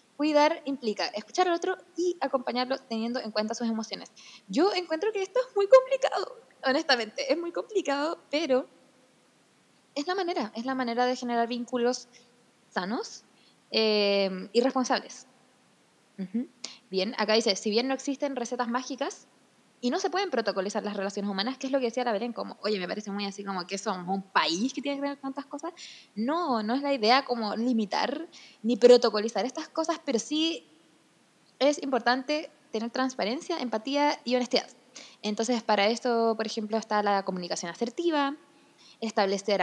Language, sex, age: Spanish, female, 20-39